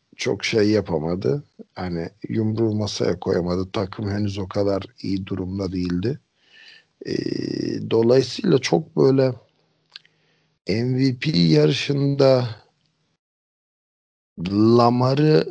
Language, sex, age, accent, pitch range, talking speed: Turkish, male, 60-79, native, 100-135 Hz, 75 wpm